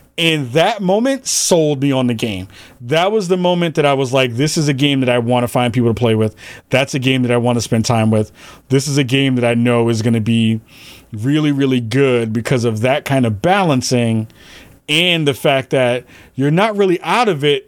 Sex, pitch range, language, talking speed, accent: male, 125-150 Hz, English, 225 wpm, American